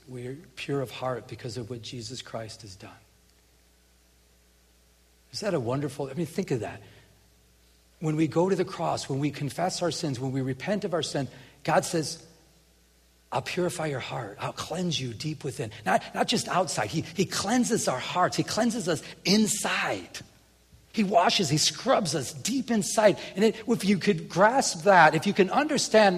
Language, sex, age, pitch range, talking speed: English, male, 40-59, 130-215 Hz, 180 wpm